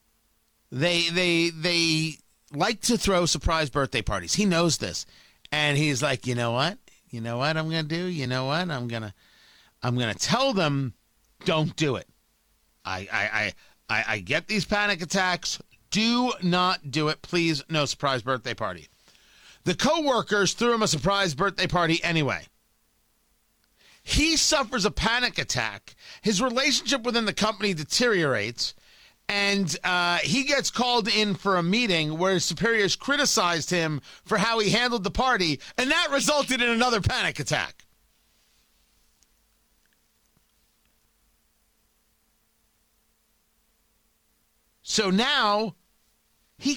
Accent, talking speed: American, 135 wpm